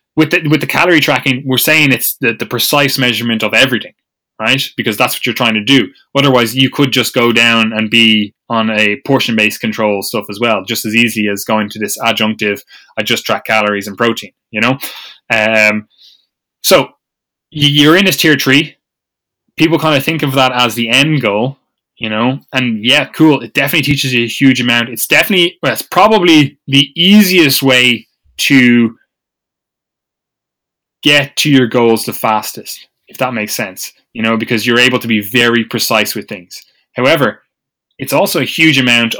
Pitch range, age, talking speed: 115-145 Hz, 20-39, 180 wpm